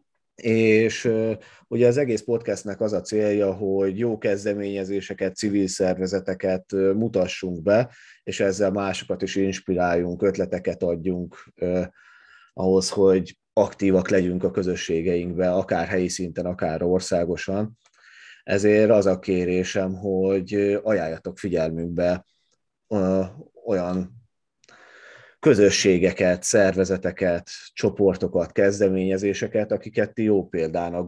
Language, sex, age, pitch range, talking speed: Hungarian, male, 30-49, 90-100 Hz, 95 wpm